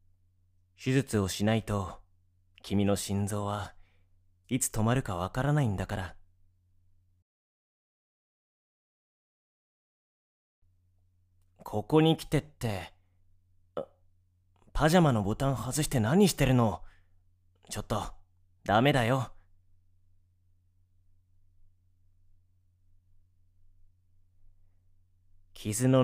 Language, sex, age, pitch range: Japanese, male, 30-49, 90-105 Hz